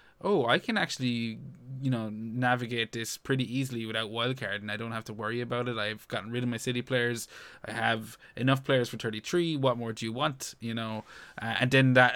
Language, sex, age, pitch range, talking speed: English, male, 20-39, 115-135 Hz, 220 wpm